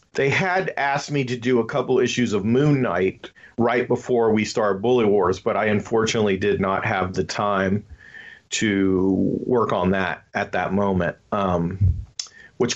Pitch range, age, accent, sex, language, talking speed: 105-145 Hz, 40-59, American, male, English, 165 wpm